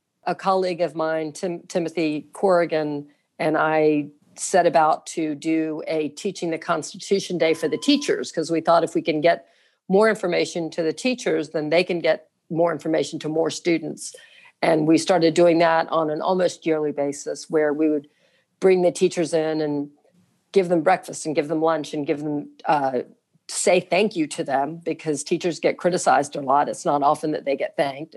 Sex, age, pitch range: female, 50-69, 150-170 Hz